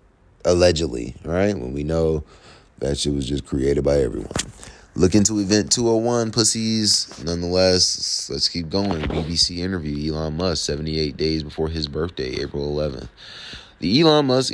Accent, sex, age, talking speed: American, male, 30-49, 145 wpm